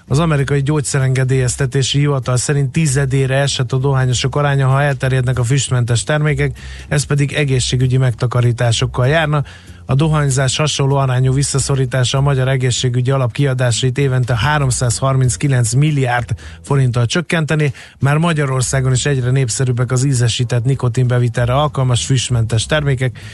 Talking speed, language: 115 wpm, Hungarian